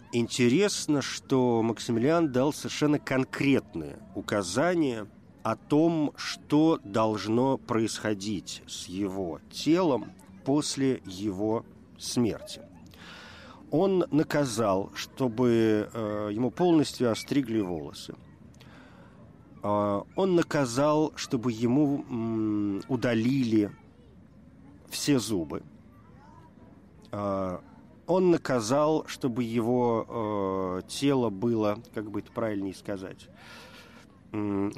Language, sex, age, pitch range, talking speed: Russian, male, 50-69, 105-140 Hz, 80 wpm